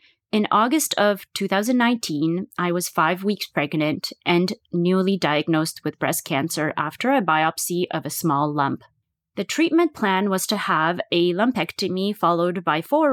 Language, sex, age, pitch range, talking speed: English, female, 30-49, 160-205 Hz, 150 wpm